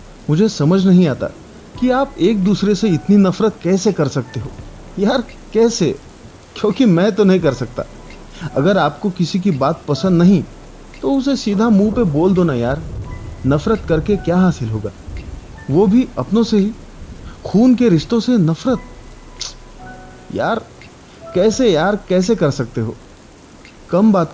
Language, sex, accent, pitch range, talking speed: Hindi, male, native, 125-195 Hz, 155 wpm